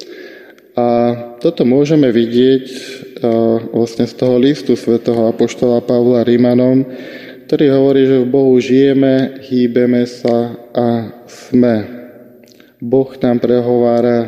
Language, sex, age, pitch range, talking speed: Slovak, male, 20-39, 115-130 Hz, 105 wpm